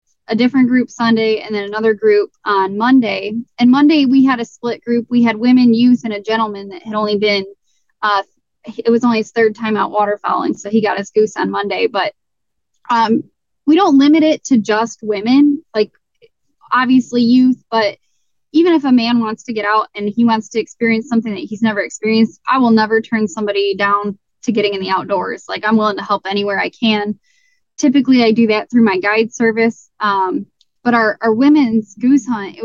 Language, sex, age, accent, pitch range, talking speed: English, female, 10-29, American, 210-245 Hz, 200 wpm